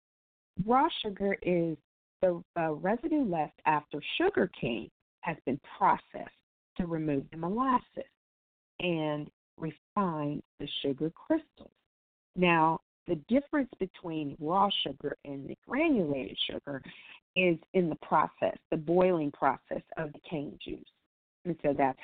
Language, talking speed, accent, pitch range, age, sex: English, 125 wpm, American, 140-175 Hz, 40-59, female